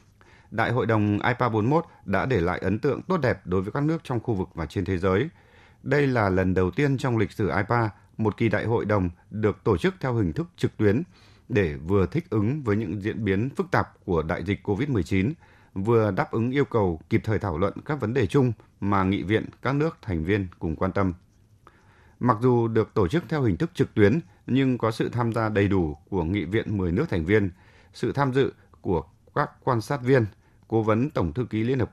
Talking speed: 225 wpm